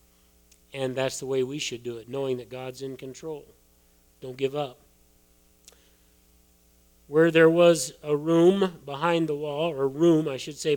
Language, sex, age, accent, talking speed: English, male, 40-59, American, 160 wpm